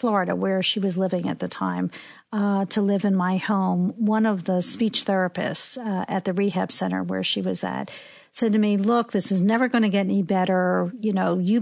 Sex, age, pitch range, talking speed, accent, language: female, 50-69, 190-230 Hz, 220 wpm, American, English